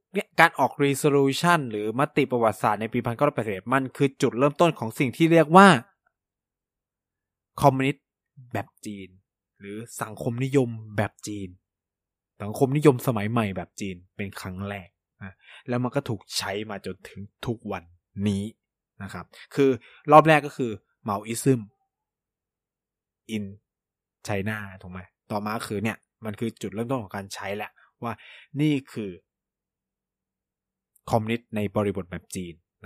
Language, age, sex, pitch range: Thai, 20-39, male, 100-140 Hz